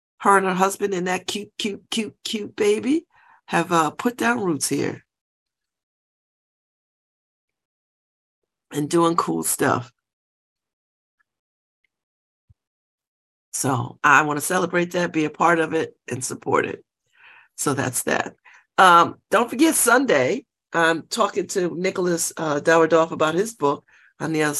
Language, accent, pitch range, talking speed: English, American, 155-200 Hz, 130 wpm